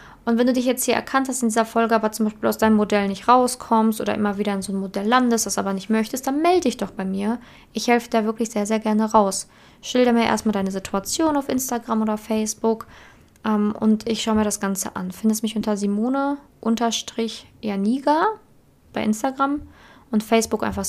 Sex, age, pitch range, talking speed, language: female, 20-39, 200-230 Hz, 205 wpm, German